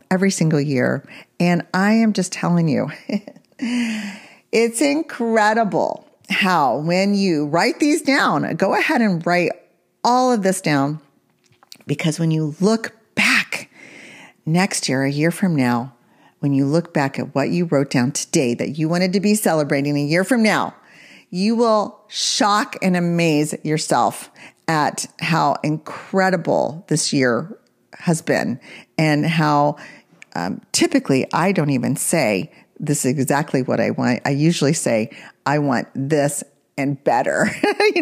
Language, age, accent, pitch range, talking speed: English, 40-59, American, 145-205 Hz, 145 wpm